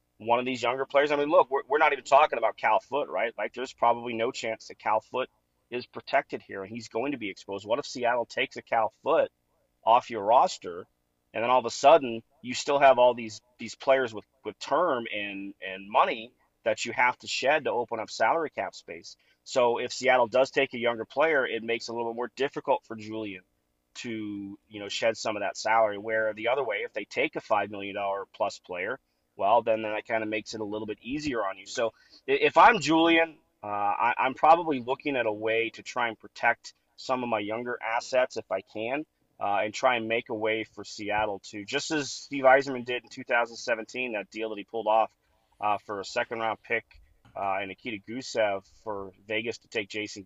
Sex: male